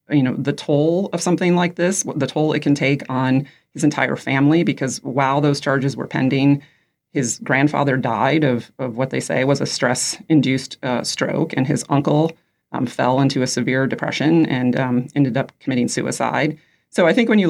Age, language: 30-49, English